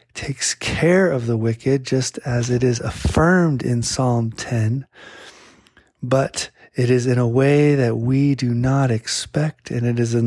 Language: English